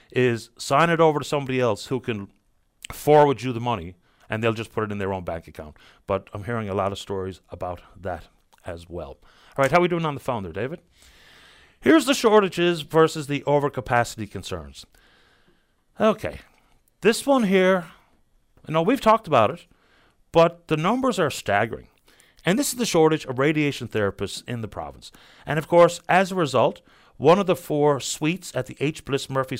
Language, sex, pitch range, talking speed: English, male, 120-165 Hz, 190 wpm